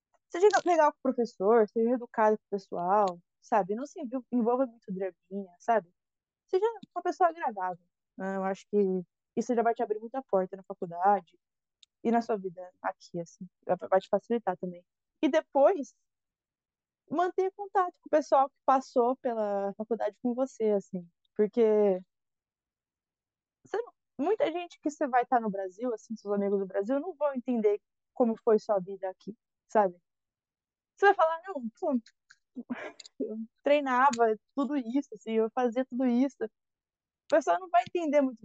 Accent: Brazilian